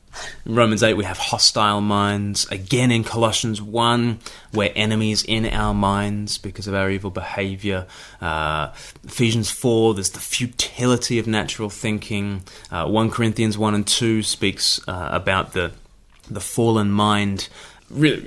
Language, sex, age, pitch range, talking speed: English, male, 20-39, 95-110 Hz, 145 wpm